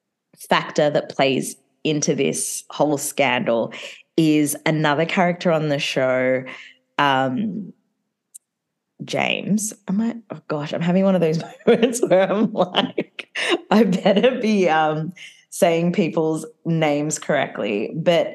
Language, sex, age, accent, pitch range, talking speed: English, female, 20-39, Australian, 150-210 Hz, 120 wpm